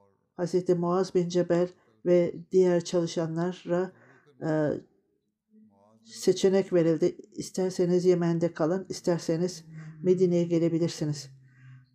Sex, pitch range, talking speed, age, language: male, 155-180 Hz, 80 wpm, 60-79, Turkish